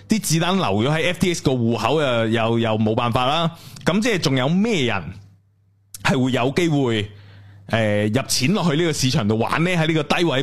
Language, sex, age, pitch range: Chinese, male, 20-39, 105-160 Hz